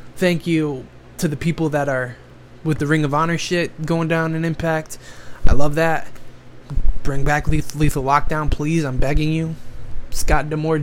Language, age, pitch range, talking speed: English, 20-39, 140-165 Hz, 170 wpm